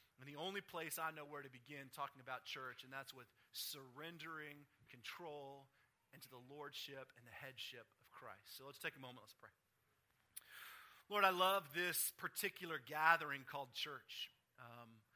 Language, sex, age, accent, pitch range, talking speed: English, male, 40-59, American, 130-160 Hz, 160 wpm